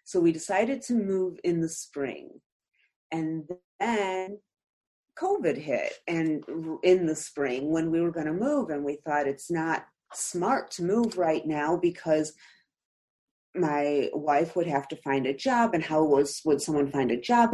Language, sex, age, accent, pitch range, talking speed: English, female, 40-59, American, 150-205 Hz, 170 wpm